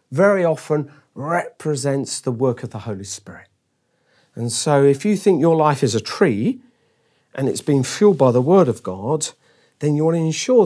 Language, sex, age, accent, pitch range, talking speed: English, male, 40-59, British, 145-205 Hz, 185 wpm